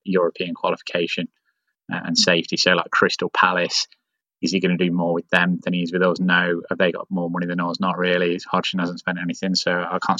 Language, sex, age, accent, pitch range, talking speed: English, male, 20-39, British, 90-95 Hz, 225 wpm